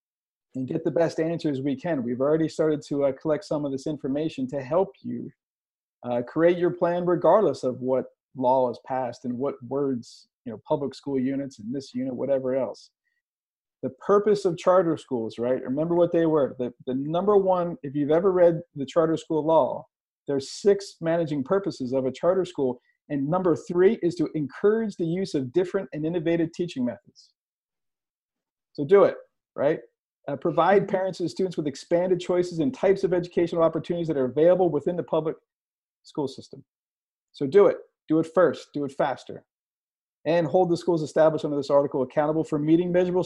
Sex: male